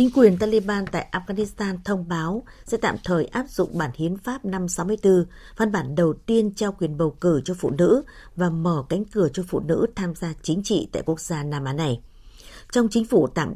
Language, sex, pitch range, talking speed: Vietnamese, female, 165-210 Hz, 215 wpm